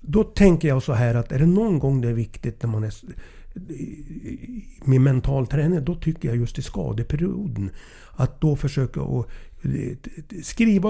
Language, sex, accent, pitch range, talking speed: English, male, Swedish, 120-160 Hz, 165 wpm